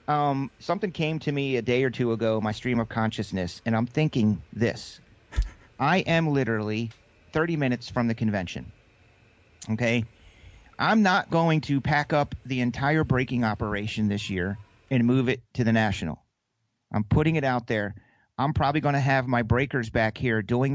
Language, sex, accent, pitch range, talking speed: English, male, American, 110-140 Hz, 175 wpm